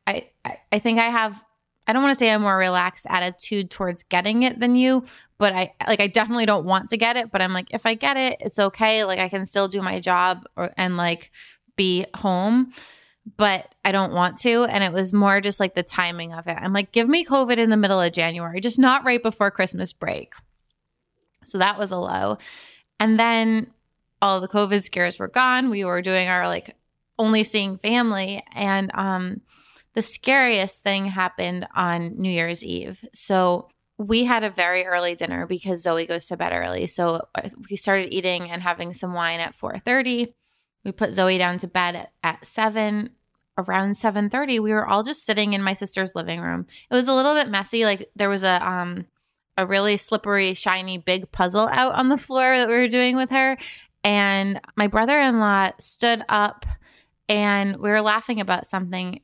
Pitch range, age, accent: 185-225 Hz, 20-39, American